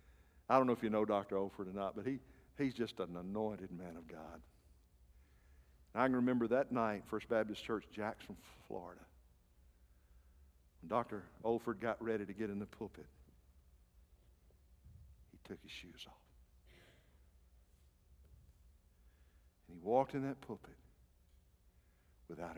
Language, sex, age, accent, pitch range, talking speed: English, male, 60-79, American, 65-105 Hz, 135 wpm